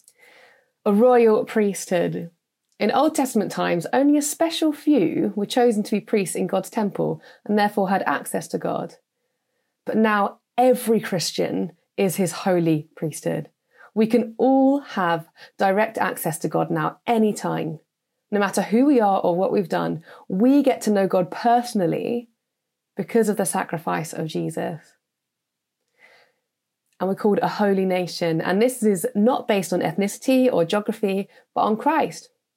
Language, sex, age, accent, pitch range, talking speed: English, female, 30-49, British, 185-255 Hz, 150 wpm